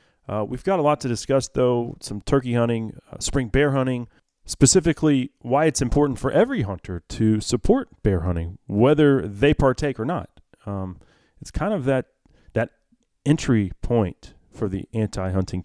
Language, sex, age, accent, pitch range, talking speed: English, male, 30-49, American, 100-140 Hz, 160 wpm